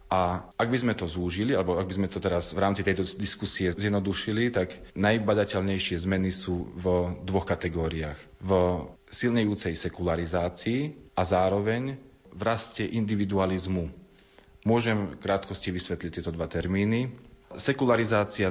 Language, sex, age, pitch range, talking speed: Slovak, male, 40-59, 90-105 Hz, 125 wpm